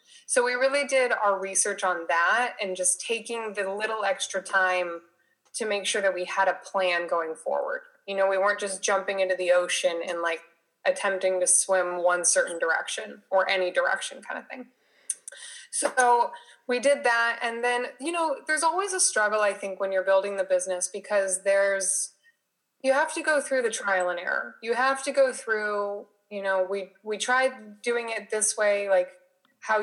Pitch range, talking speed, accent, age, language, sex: 185-260 Hz, 190 wpm, American, 20-39, English, female